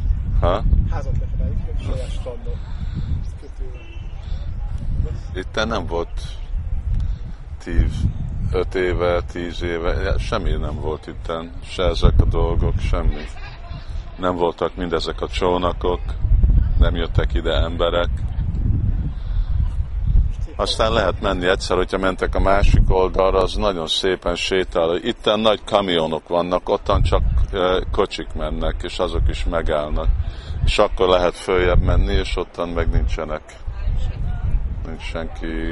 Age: 50-69